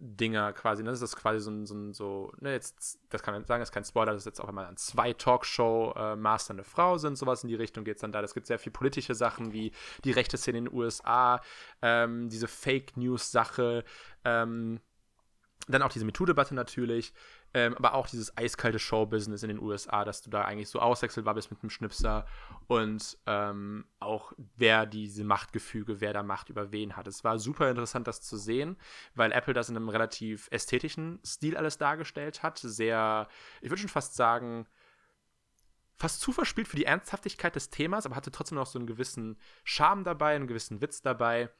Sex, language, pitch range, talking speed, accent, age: male, German, 105-125 Hz, 200 wpm, German, 20-39